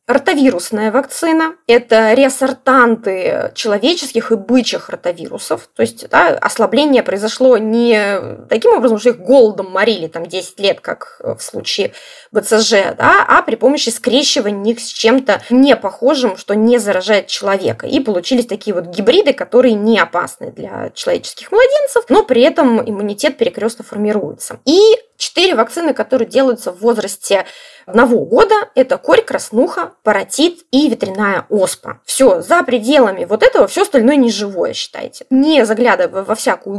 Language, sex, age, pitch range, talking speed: Russian, female, 20-39, 215-310 Hz, 140 wpm